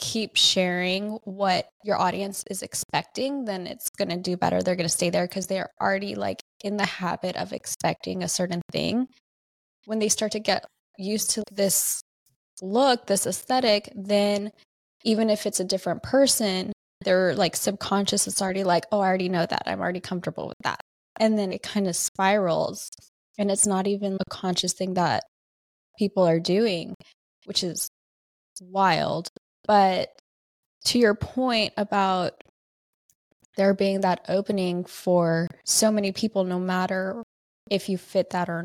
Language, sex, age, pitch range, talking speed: English, female, 20-39, 180-205 Hz, 160 wpm